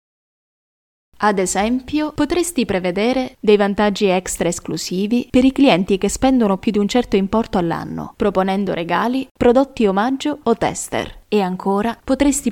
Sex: female